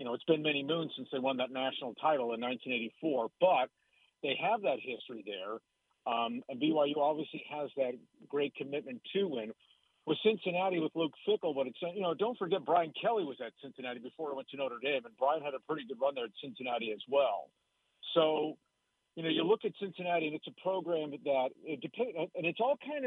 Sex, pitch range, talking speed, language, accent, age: male, 135-175 Hz, 215 wpm, English, American, 50-69